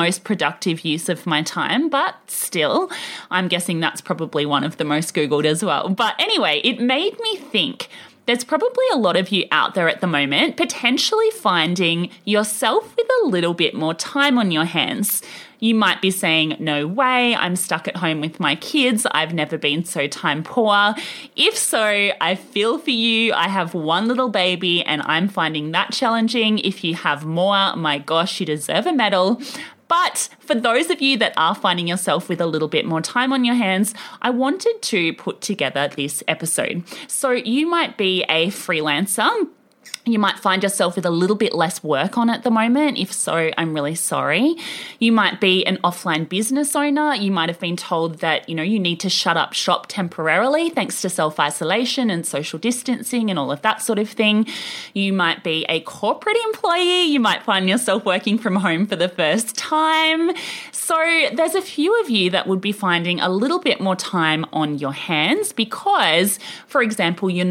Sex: female